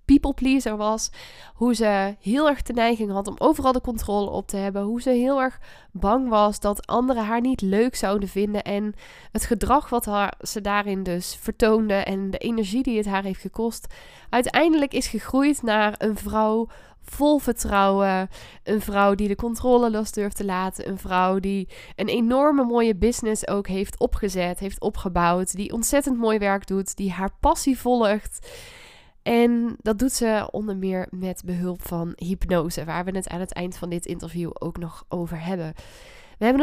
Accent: Dutch